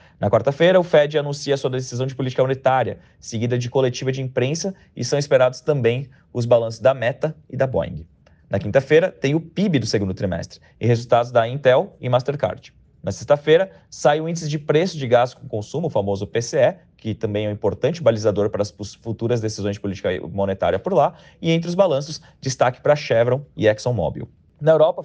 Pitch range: 115-145 Hz